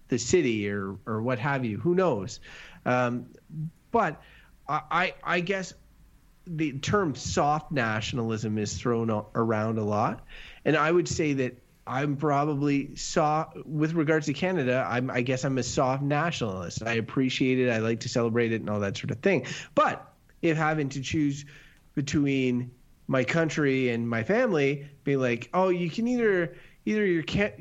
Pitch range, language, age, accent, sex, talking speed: 120-160 Hz, English, 30-49, American, male, 165 wpm